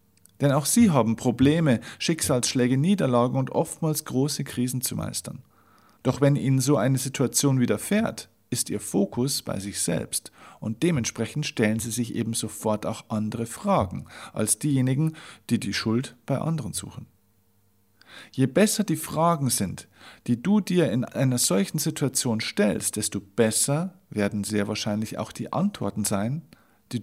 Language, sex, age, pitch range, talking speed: German, male, 50-69, 110-145 Hz, 150 wpm